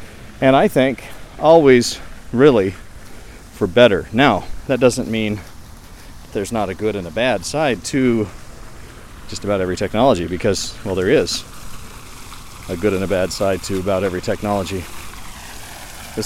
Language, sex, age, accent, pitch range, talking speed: English, male, 40-59, American, 100-125 Hz, 145 wpm